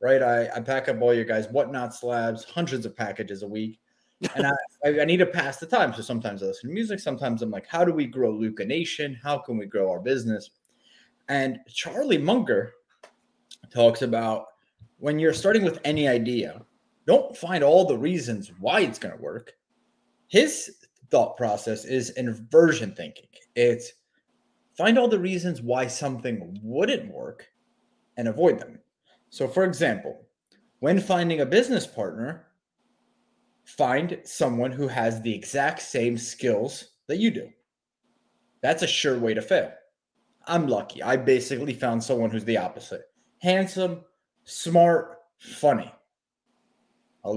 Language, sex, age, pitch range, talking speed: English, male, 30-49, 115-175 Hz, 150 wpm